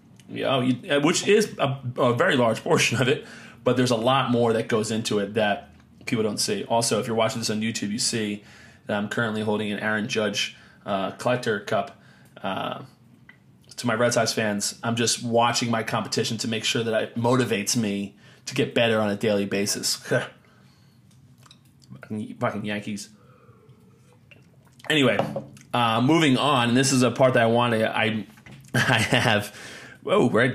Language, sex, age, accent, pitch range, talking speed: English, male, 30-49, American, 110-130 Hz, 175 wpm